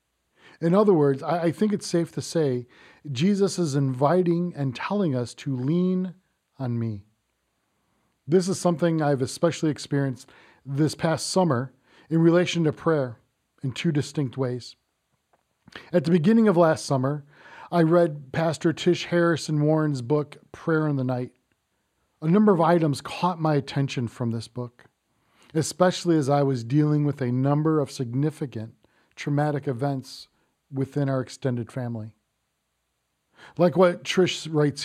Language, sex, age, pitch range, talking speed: English, male, 40-59, 135-175 Hz, 145 wpm